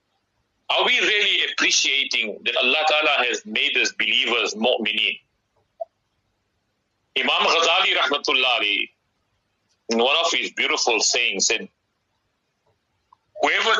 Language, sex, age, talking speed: English, male, 60-79, 95 wpm